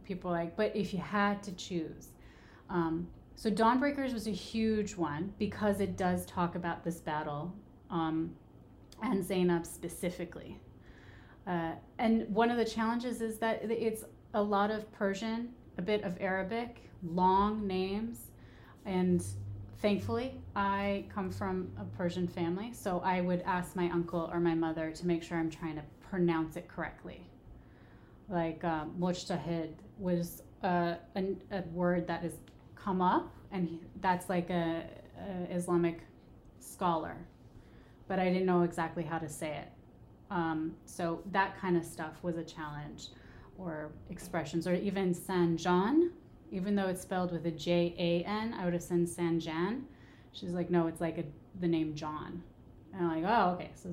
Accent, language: American, English